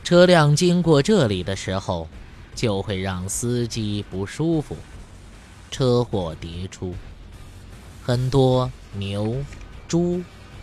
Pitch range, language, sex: 95-130 Hz, Chinese, male